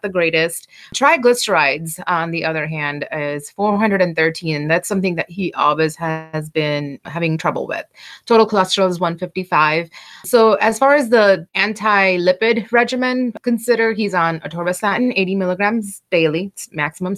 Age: 30-49